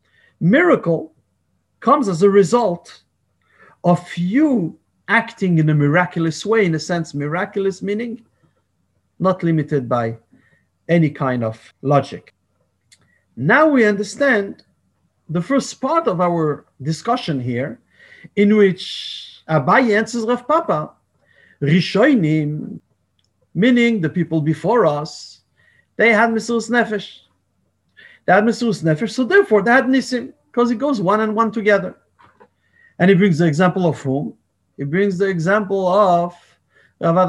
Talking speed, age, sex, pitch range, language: 120 wpm, 50-69, male, 140-210 Hz, English